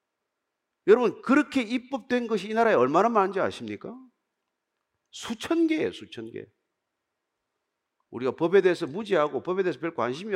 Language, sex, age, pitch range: Korean, male, 40-59, 185-275 Hz